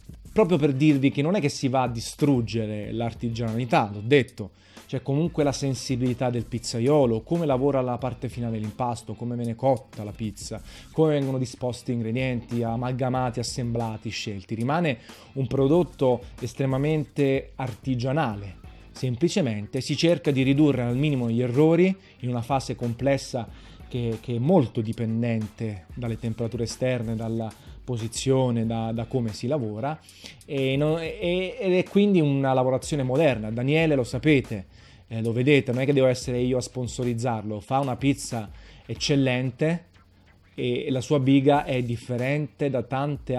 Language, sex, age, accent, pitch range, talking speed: Italian, male, 30-49, native, 115-135 Hz, 145 wpm